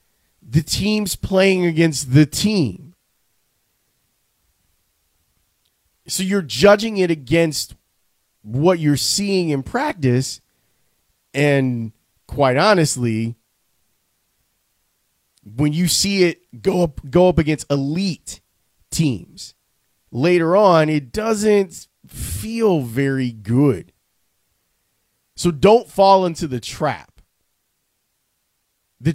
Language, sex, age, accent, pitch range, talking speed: English, male, 30-49, American, 120-185 Hz, 90 wpm